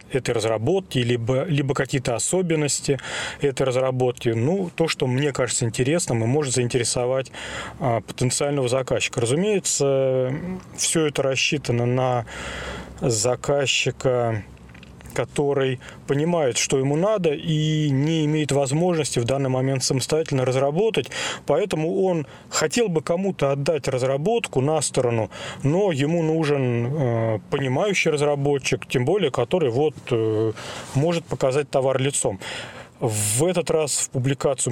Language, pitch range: Russian, 120-155 Hz